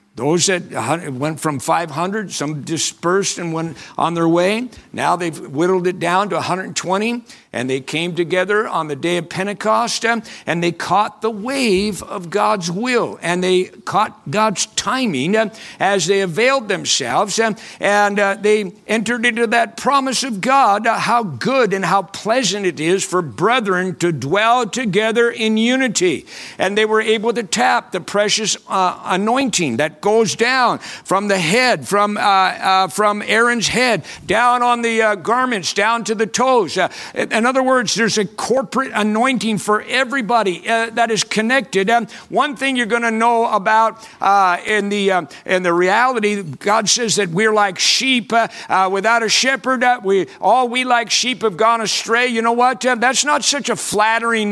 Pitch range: 195-245 Hz